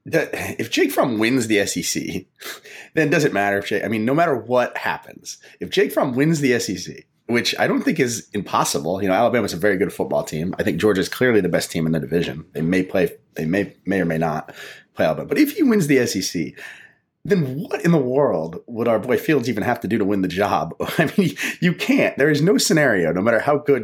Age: 30-49